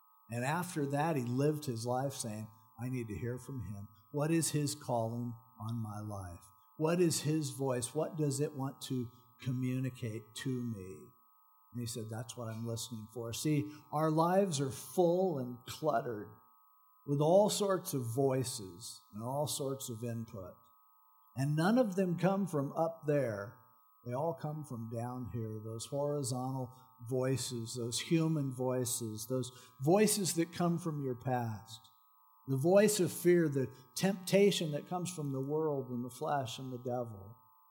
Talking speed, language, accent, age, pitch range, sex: 160 wpm, English, American, 50-69, 125-145 Hz, male